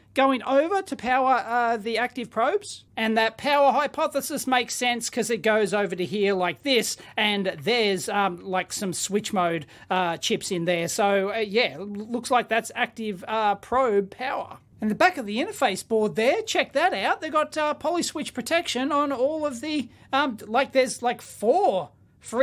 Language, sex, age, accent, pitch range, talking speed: English, male, 30-49, Australian, 210-270 Hz, 185 wpm